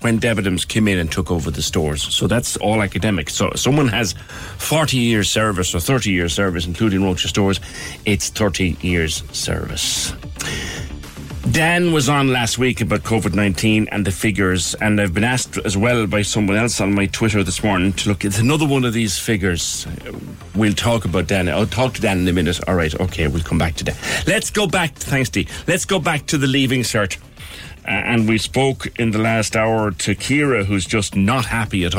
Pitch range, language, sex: 90-115 Hz, English, male